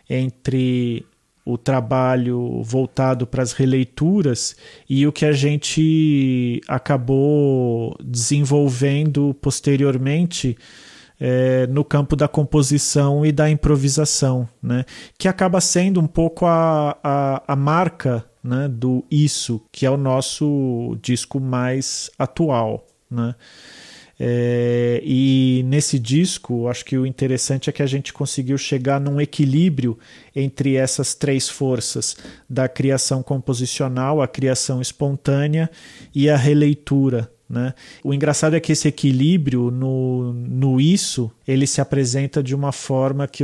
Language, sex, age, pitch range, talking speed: English, male, 40-59, 130-145 Hz, 120 wpm